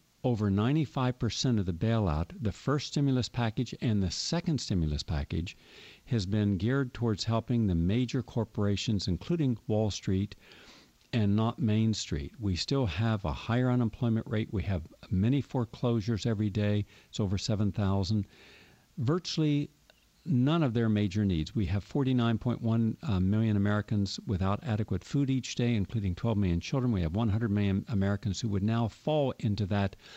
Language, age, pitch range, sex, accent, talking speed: English, 50-69, 100-130 Hz, male, American, 150 wpm